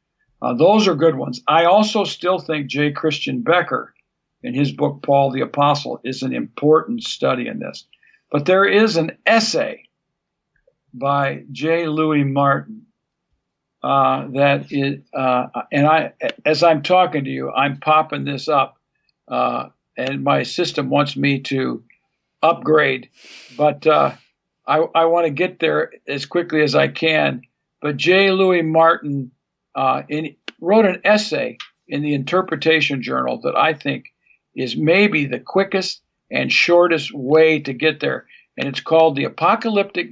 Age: 60-79